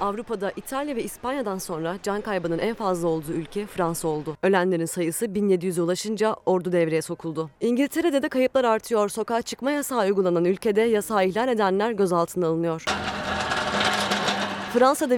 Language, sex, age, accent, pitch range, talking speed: Turkish, female, 30-49, native, 180-240 Hz, 140 wpm